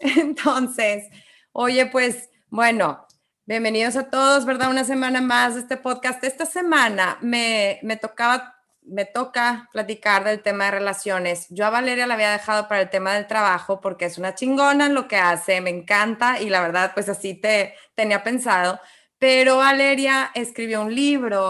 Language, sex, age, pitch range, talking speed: English, female, 20-39, 195-250 Hz, 160 wpm